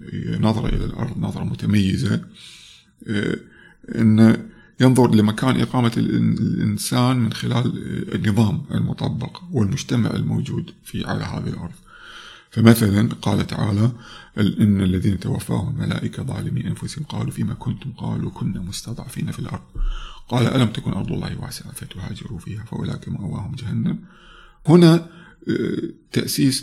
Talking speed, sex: 115 wpm, male